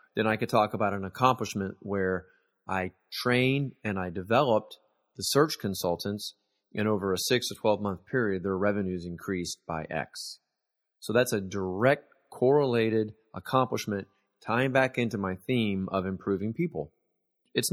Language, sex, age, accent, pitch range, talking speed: English, male, 30-49, American, 95-125 Hz, 150 wpm